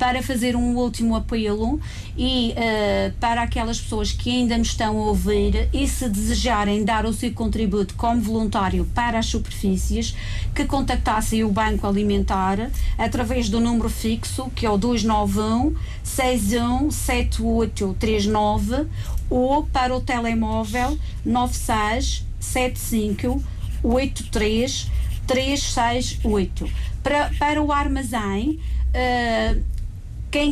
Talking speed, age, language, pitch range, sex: 100 wpm, 40-59, Portuguese, 210-250 Hz, female